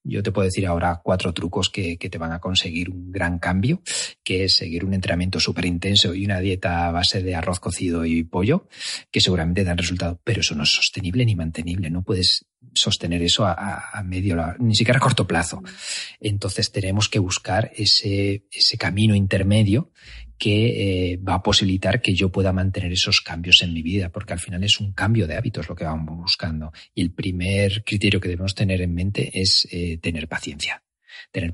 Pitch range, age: 90-105 Hz, 40-59